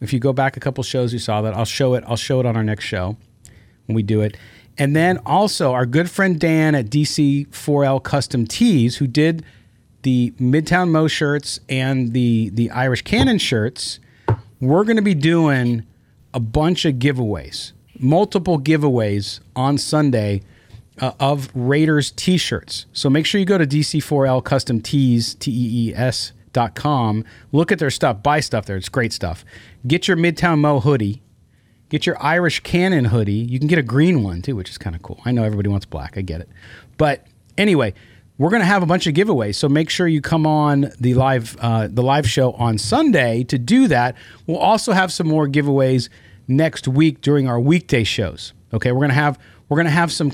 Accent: American